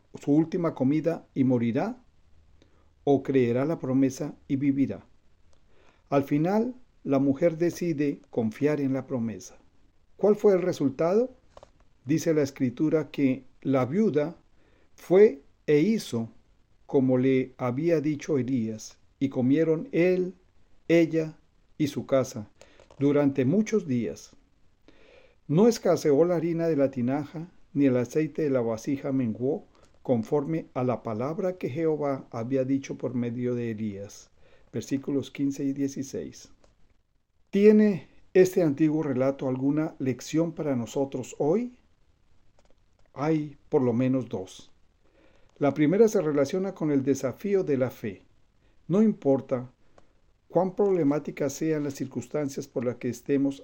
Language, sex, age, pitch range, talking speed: Spanish, male, 50-69, 125-160 Hz, 125 wpm